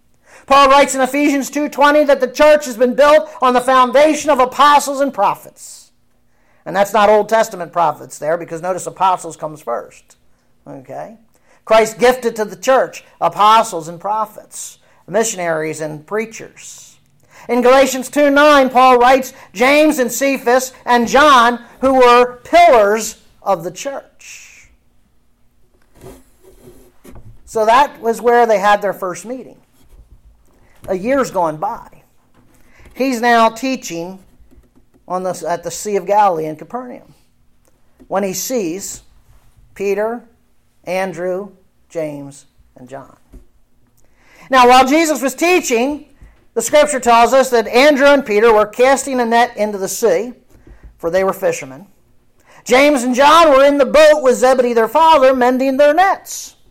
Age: 50-69